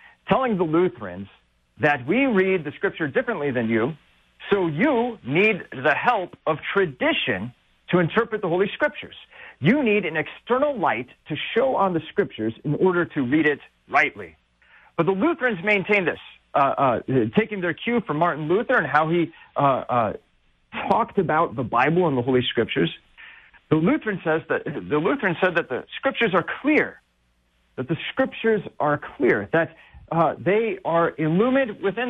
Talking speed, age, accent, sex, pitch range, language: 165 wpm, 40-59, American, male, 135-200 Hz, English